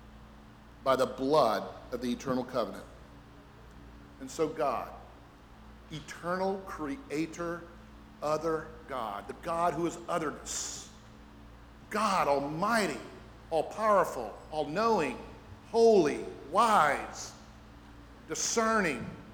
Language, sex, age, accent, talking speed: English, male, 50-69, American, 80 wpm